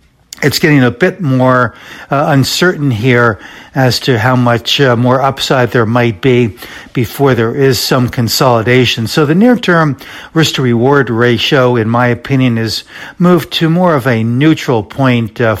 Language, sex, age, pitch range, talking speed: English, male, 60-79, 120-150 Hz, 155 wpm